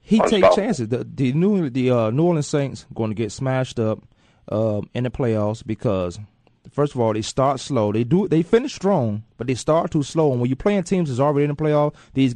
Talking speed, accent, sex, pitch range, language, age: 235 wpm, American, male, 115-155 Hz, English, 30-49